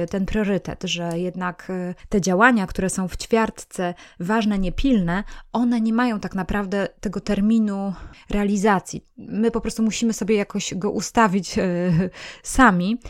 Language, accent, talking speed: Polish, native, 135 wpm